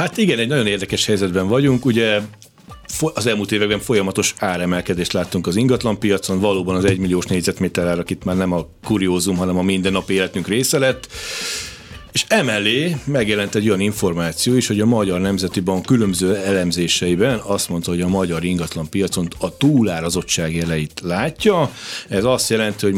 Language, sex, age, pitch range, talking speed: Hungarian, male, 40-59, 90-110 Hz, 160 wpm